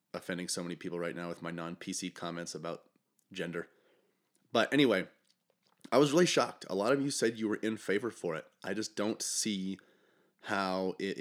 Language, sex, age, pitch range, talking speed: English, male, 30-49, 90-115 Hz, 195 wpm